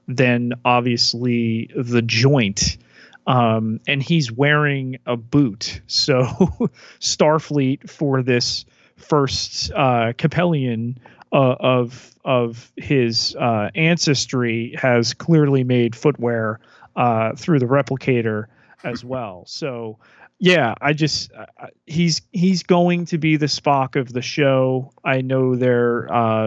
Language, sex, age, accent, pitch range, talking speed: English, male, 30-49, American, 115-135 Hz, 115 wpm